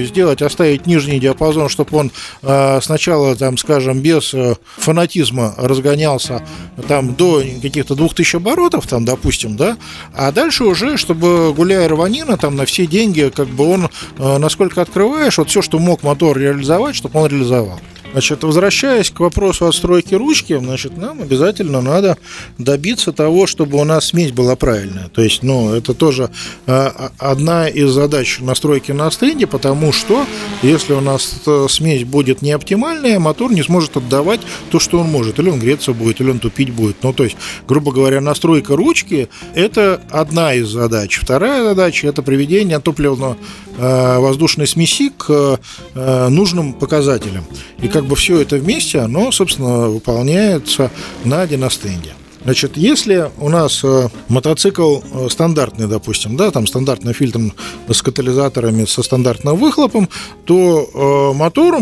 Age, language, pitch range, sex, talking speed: 40-59, Russian, 130-170 Hz, male, 145 wpm